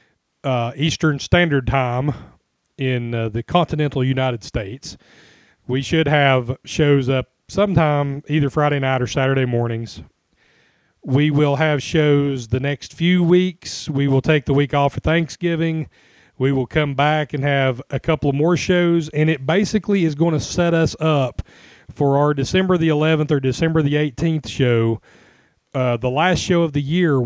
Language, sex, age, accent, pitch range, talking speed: English, male, 40-59, American, 130-160 Hz, 165 wpm